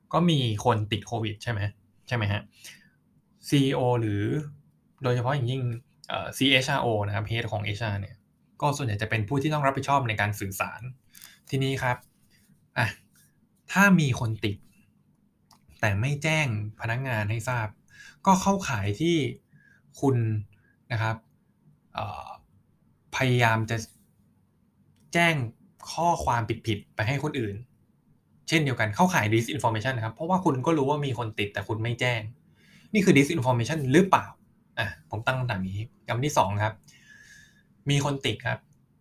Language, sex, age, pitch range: Thai, male, 20-39, 110-150 Hz